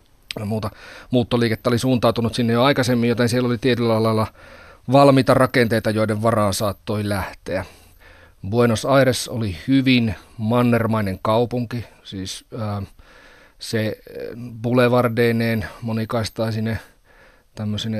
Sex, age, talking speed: male, 30-49, 95 wpm